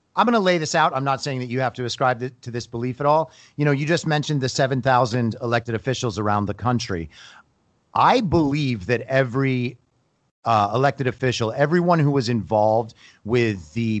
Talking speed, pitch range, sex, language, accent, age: 185 wpm, 115-140 Hz, male, English, American, 40-59